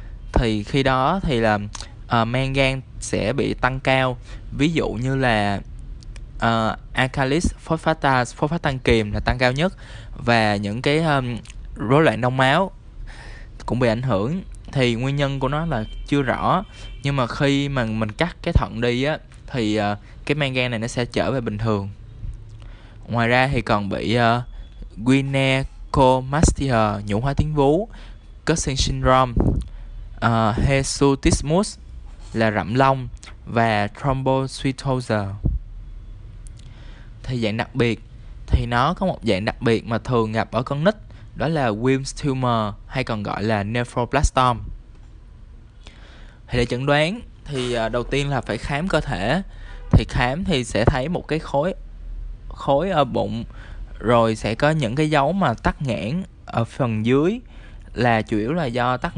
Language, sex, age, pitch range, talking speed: Vietnamese, male, 20-39, 110-135 Hz, 155 wpm